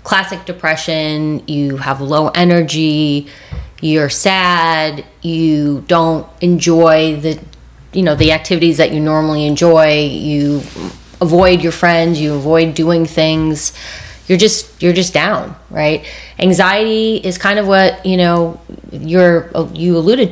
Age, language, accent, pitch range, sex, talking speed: 30-49, English, American, 150-180 Hz, female, 130 wpm